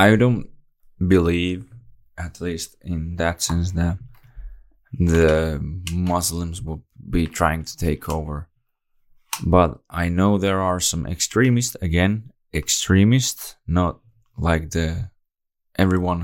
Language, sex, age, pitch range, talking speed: Finnish, male, 20-39, 75-90 Hz, 110 wpm